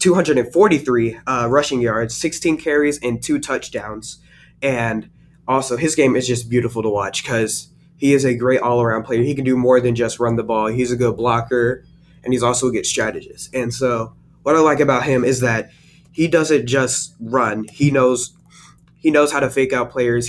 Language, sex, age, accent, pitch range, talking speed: English, male, 20-39, American, 120-150 Hz, 195 wpm